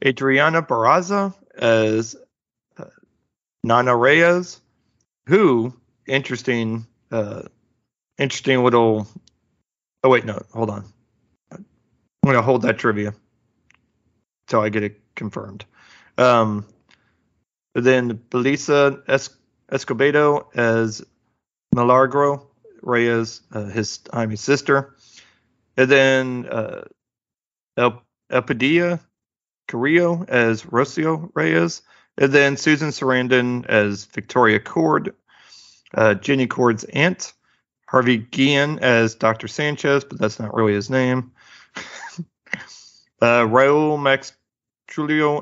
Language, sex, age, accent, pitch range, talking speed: English, male, 40-59, American, 115-135 Hz, 100 wpm